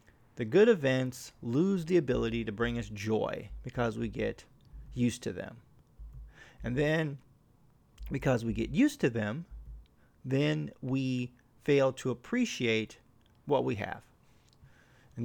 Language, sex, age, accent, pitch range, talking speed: English, male, 40-59, American, 115-140 Hz, 130 wpm